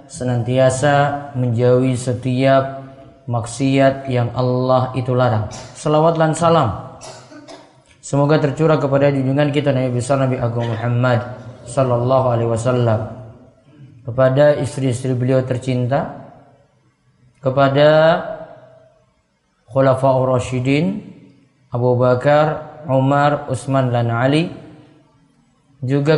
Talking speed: 85 wpm